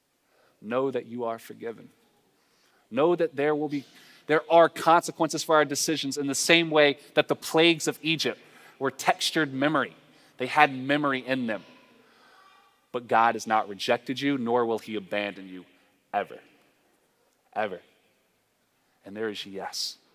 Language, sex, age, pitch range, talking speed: English, male, 30-49, 120-155 Hz, 150 wpm